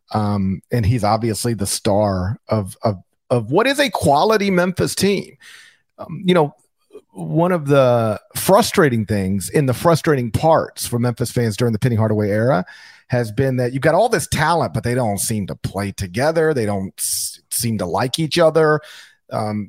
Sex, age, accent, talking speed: male, 40-59, American, 180 wpm